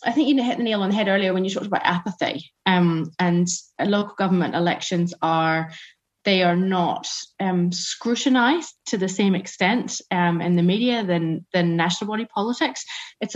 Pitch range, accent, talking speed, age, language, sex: 170-205 Hz, British, 180 wpm, 20-39, English, female